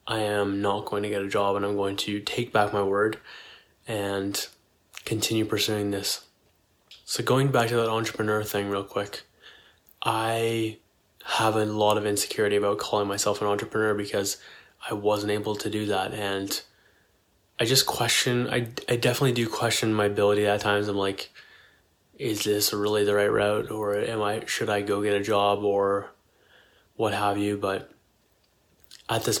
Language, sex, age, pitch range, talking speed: English, male, 20-39, 100-110 Hz, 170 wpm